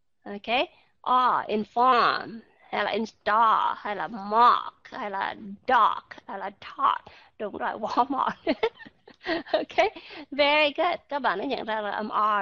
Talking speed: 145 wpm